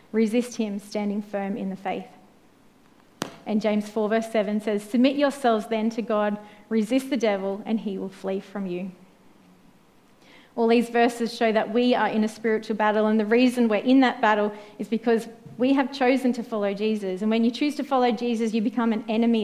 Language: English